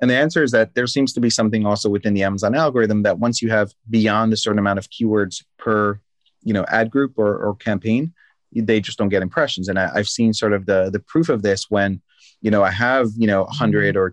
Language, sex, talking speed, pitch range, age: English, male, 245 wpm, 100-120 Hz, 30-49